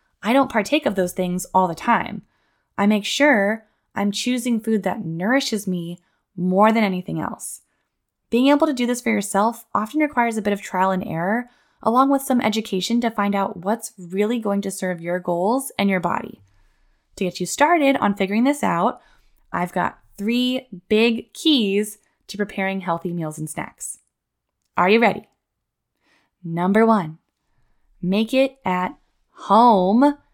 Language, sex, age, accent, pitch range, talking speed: English, female, 10-29, American, 190-240 Hz, 160 wpm